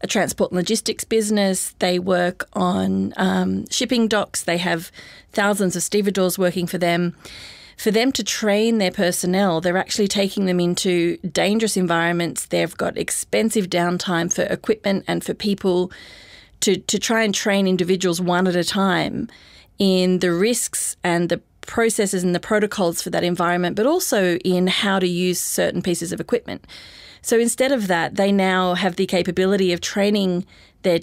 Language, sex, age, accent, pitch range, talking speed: English, female, 30-49, Australian, 180-210 Hz, 165 wpm